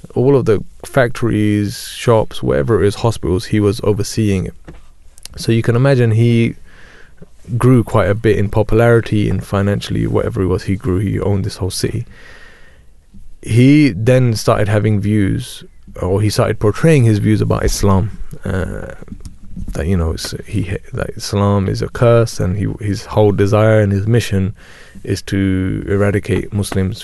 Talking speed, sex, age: 155 wpm, male, 20-39